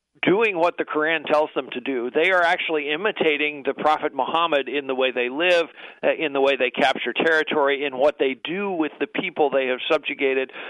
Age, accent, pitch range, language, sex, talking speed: 50-69, American, 140-180 Hz, English, male, 200 wpm